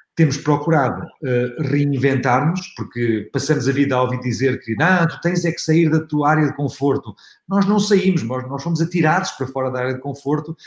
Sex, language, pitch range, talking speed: male, Portuguese, 120-150 Hz, 200 wpm